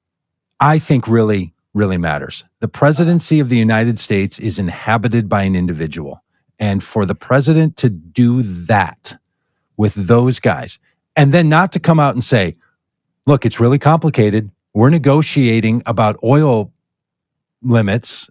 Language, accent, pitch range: English, American, 105-135 Hz